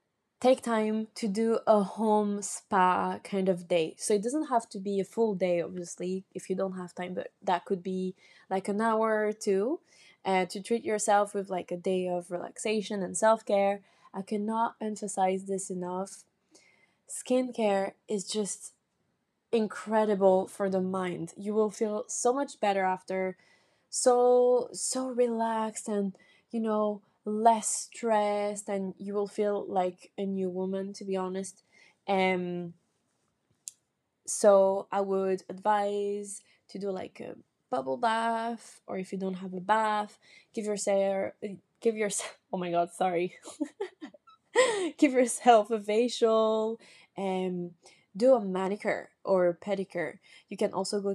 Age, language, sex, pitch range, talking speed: 20-39, English, female, 185-220 Hz, 150 wpm